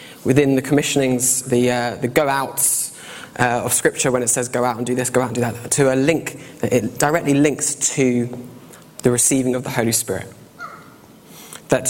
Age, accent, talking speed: 20-39, British, 190 wpm